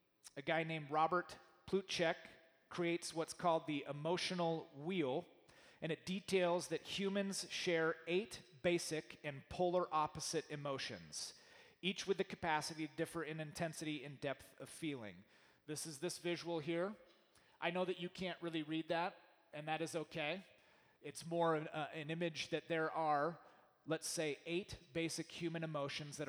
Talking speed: 155 wpm